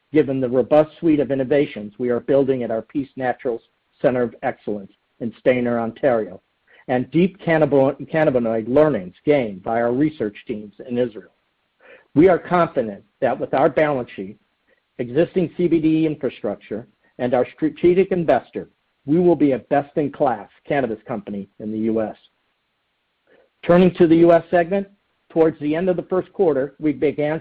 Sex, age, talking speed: male, 50-69, 155 wpm